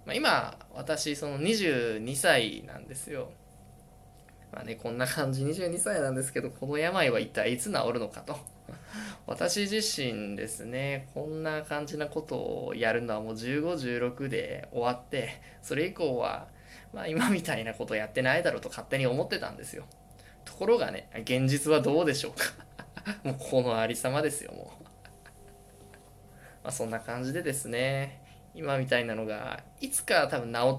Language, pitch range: Japanese, 120-155 Hz